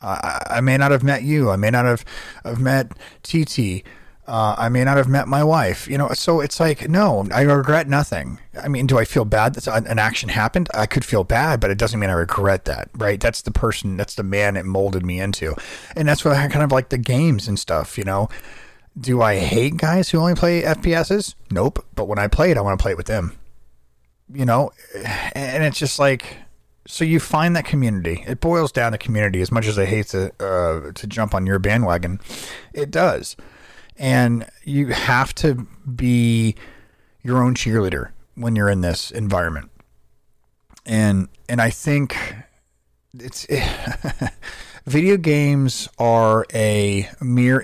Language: English